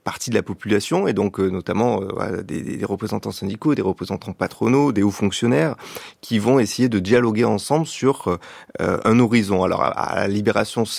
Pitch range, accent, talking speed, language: 100-120 Hz, French, 185 wpm, French